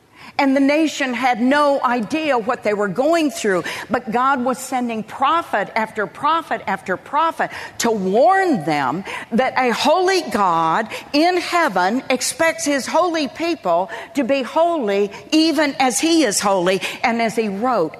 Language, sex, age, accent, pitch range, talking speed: English, female, 50-69, American, 210-285 Hz, 150 wpm